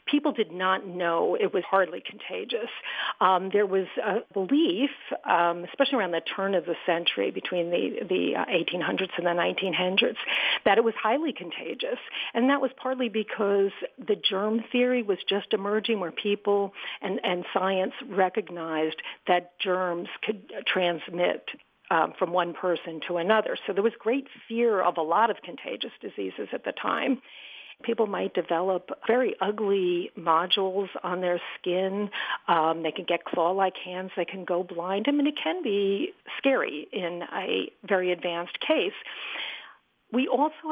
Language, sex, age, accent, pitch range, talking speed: English, female, 50-69, American, 180-235 Hz, 155 wpm